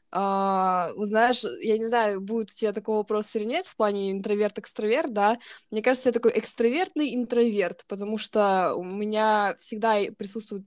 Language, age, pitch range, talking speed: Russian, 20-39, 195-230 Hz, 165 wpm